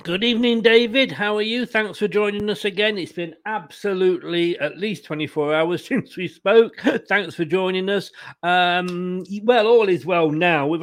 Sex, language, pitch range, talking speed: male, English, 160-200 Hz, 175 wpm